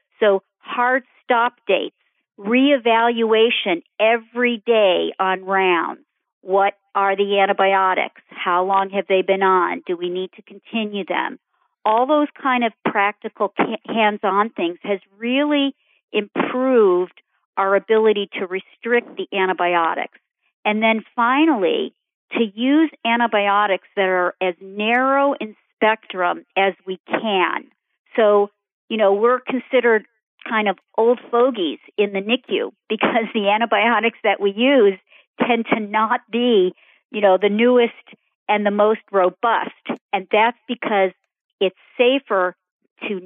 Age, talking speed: 50-69, 130 wpm